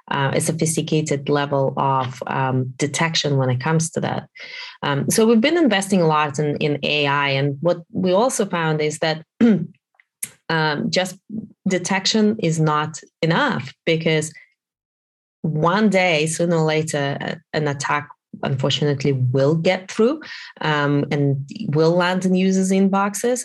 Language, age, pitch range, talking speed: English, 20-39, 145-180 Hz, 140 wpm